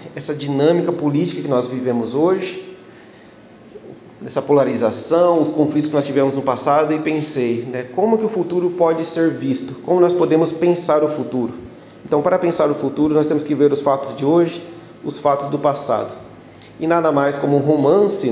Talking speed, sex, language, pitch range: 180 wpm, male, Portuguese, 130-165 Hz